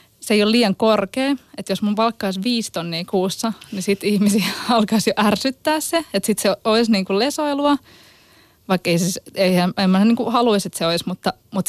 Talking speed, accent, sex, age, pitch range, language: 190 wpm, native, female, 20-39, 185-235 Hz, Finnish